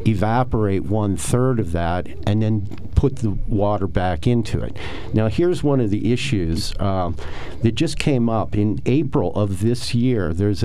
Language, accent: English, American